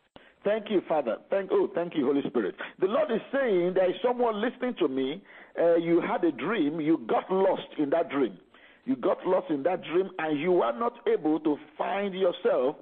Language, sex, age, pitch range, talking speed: English, male, 50-69, 175-280 Hz, 205 wpm